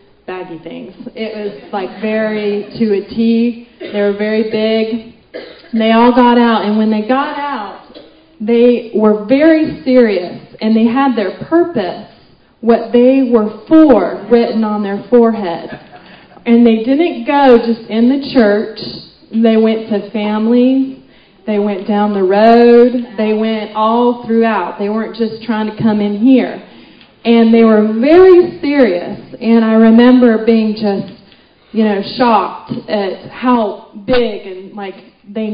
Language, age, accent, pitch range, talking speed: English, 30-49, American, 200-235 Hz, 145 wpm